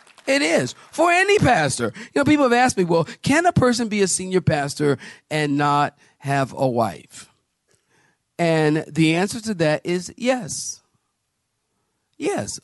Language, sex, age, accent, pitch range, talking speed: English, male, 40-59, American, 135-185 Hz, 150 wpm